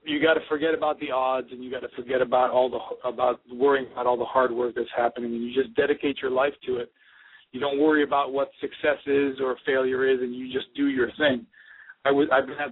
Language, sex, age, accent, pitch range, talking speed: English, male, 40-59, American, 120-165 Hz, 250 wpm